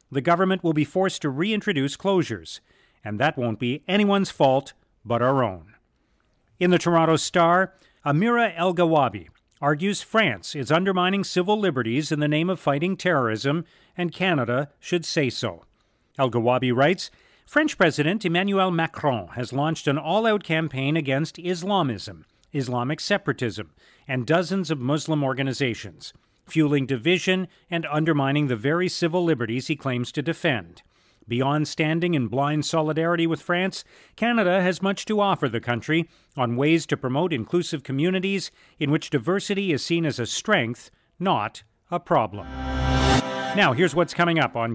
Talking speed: 145 wpm